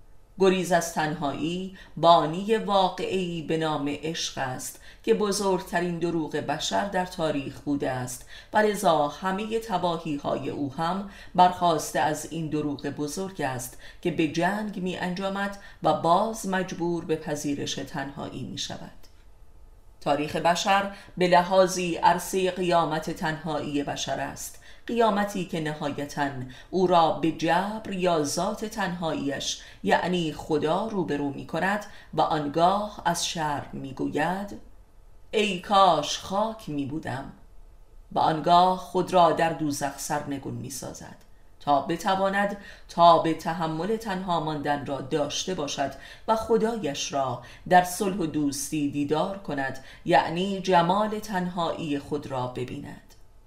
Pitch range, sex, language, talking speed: 145-185 Hz, female, Persian, 120 wpm